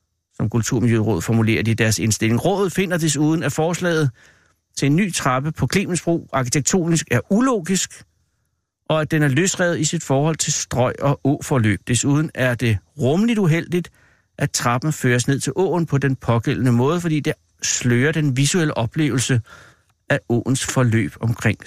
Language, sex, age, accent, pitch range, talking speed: Danish, male, 60-79, native, 110-145 Hz, 160 wpm